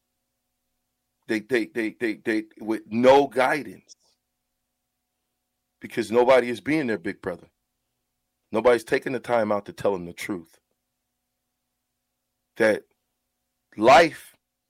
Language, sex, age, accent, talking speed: English, male, 40-59, American, 110 wpm